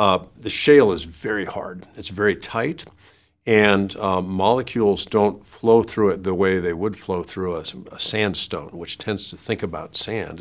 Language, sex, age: English, male, 50-69